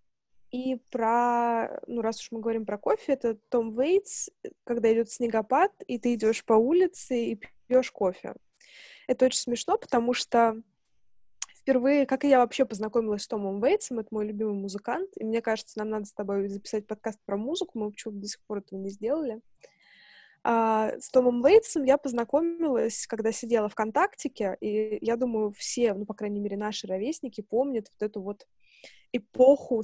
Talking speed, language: 170 wpm, Russian